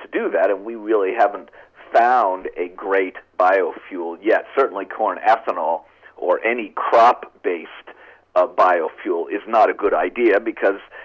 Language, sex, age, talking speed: English, male, 50-69, 145 wpm